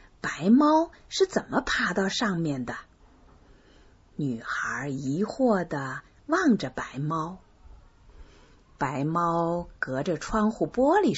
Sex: female